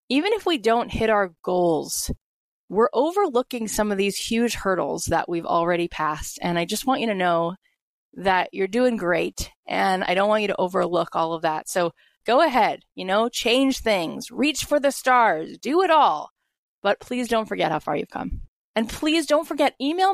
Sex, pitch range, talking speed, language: female, 190-260 Hz, 195 wpm, English